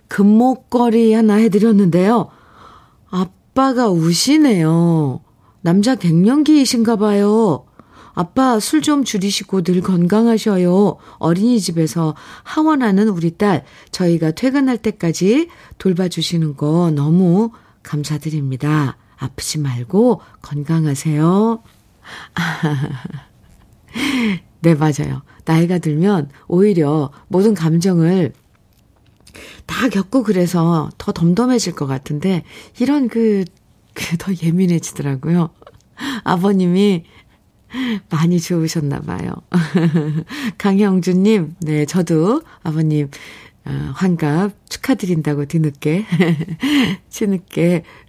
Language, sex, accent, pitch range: Korean, female, native, 150-210 Hz